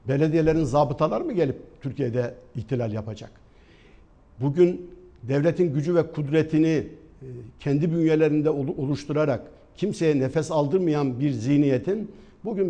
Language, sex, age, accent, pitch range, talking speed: Turkish, male, 60-79, native, 140-170 Hz, 100 wpm